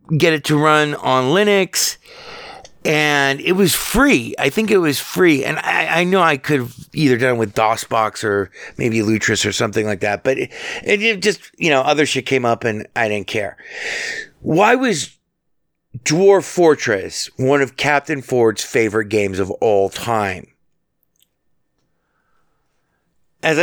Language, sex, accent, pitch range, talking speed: English, male, American, 105-150 Hz, 155 wpm